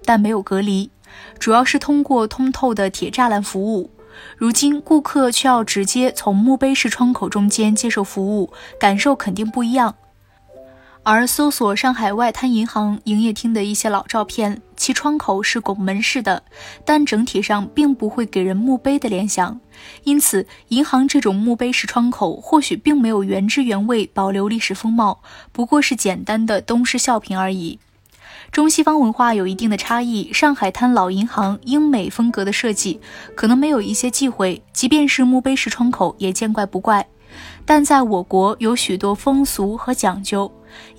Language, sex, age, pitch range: Chinese, female, 20-39, 200-260 Hz